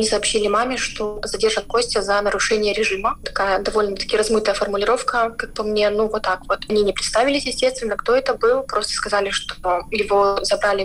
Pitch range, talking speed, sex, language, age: 205-240 Hz, 170 wpm, female, Russian, 20-39